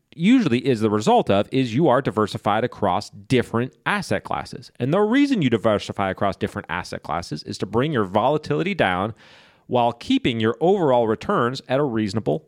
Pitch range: 105-135 Hz